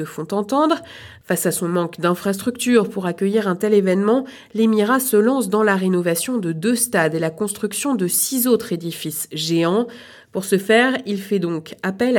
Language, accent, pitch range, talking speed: French, French, 170-215 Hz, 175 wpm